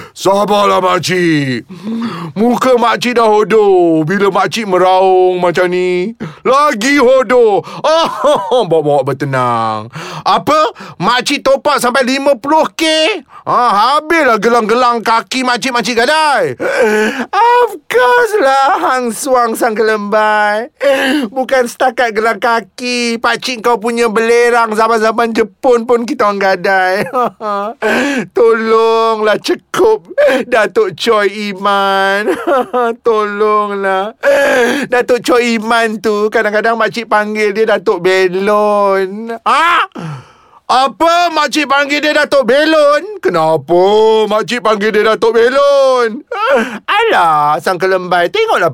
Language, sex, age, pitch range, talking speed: Malay, male, 30-49, 190-255 Hz, 100 wpm